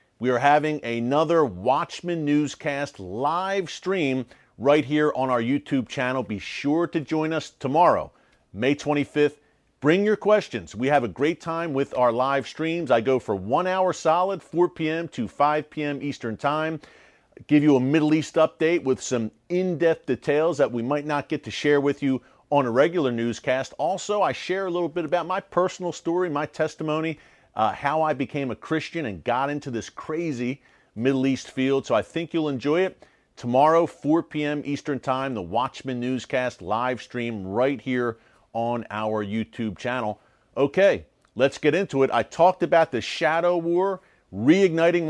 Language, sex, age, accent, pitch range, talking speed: English, male, 40-59, American, 125-160 Hz, 175 wpm